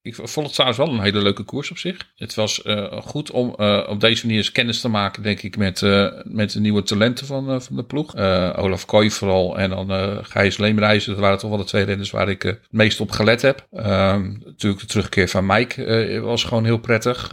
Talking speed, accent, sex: 245 wpm, Dutch, male